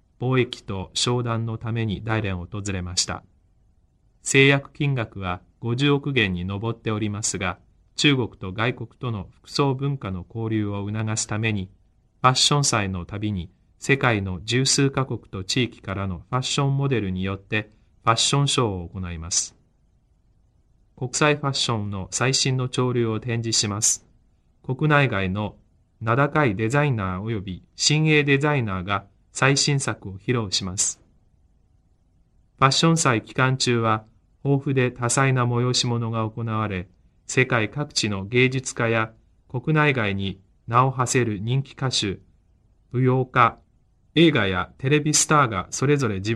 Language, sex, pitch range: Chinese, male, 95-130 Hz